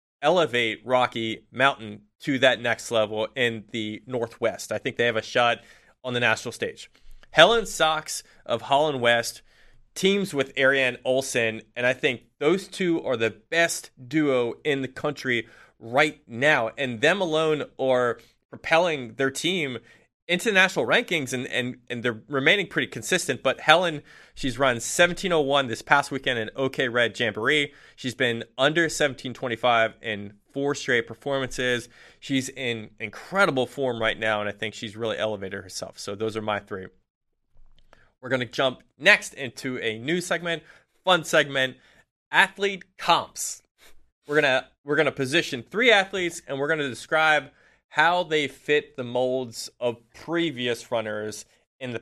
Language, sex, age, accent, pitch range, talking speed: English, male, 20-39, American, 115-155 Hz, 155 wpm